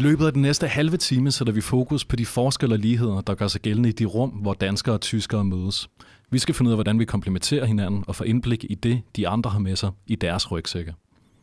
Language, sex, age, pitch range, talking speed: Danish, male, 30-49, 95-120 Hz, 255 wpm